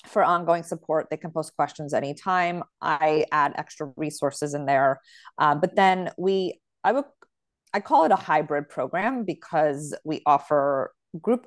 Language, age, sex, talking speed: English, 30-49, female, 155 wpm